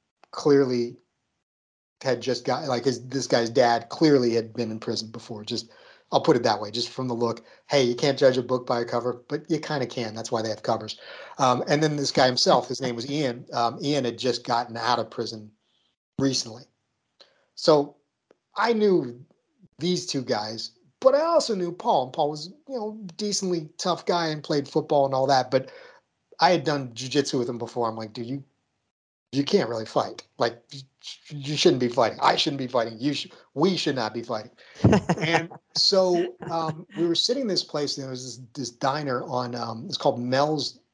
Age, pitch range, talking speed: 40-59, 120-150 Hz, 205 wpm